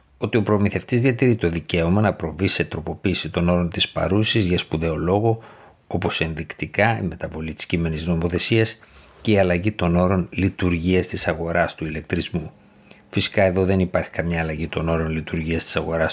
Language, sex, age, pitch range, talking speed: Greek, male, 50-69, 85-105 Hz, 165 wpm